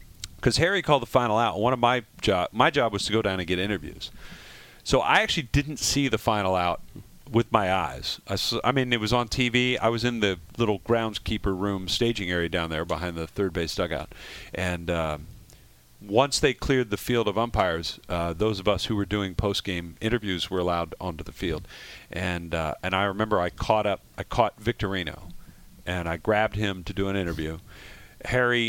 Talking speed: 205 wpm